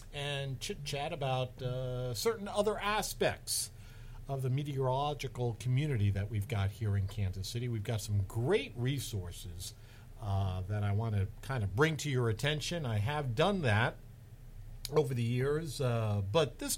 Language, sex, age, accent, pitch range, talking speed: English, male, 50-69, American, 110-150 Hz, 160 wpm